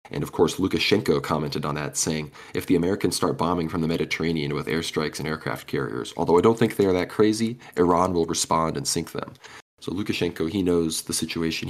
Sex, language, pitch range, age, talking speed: male, English, 85-105 Hz, 20-39, 210 wpm